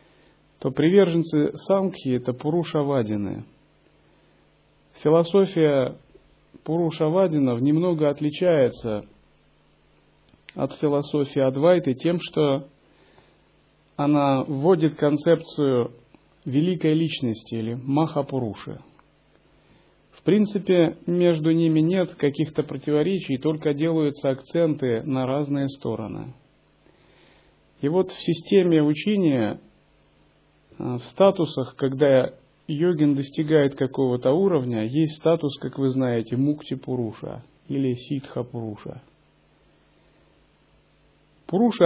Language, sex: Russian, male